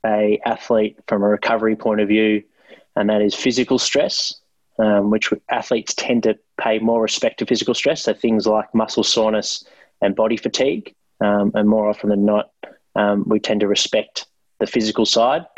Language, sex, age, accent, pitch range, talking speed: English, male, 20-39, Australian, 100-110 Hz, 175 wpm